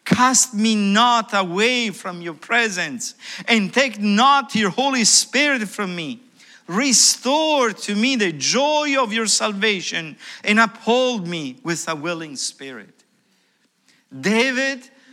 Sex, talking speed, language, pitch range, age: male, 125 wpm, English, 170-230 Hz, 50-69